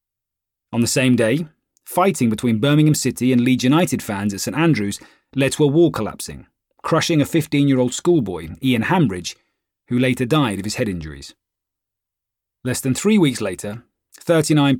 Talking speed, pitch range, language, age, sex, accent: 160 wpm, 115-150 Hz, English, 30-49, male, British